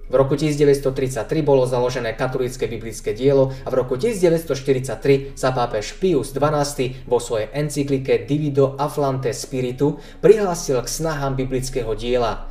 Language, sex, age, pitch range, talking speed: Slovak, male, 20-39, 135-180 Hz, 130 wpm